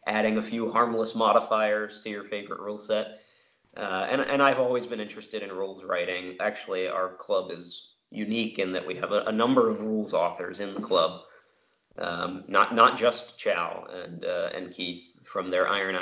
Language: English